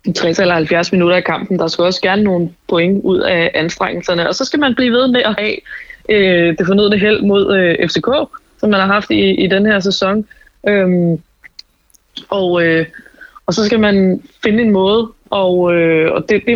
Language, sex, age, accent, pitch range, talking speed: Danish, female, 20-39, native, 165-195 Hz, 205 wpm